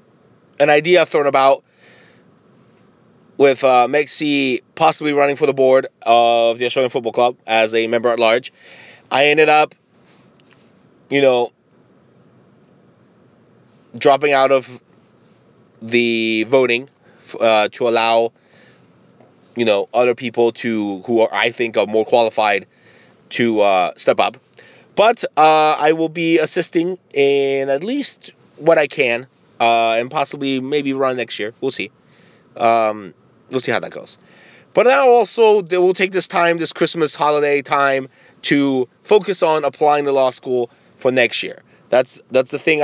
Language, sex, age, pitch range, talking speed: English, male, 30-49, 120-150 Hz, 145 wpm